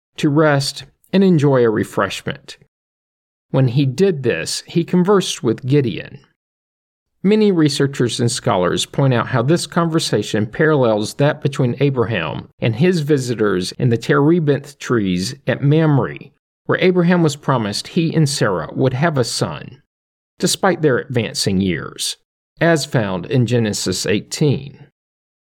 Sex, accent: male, American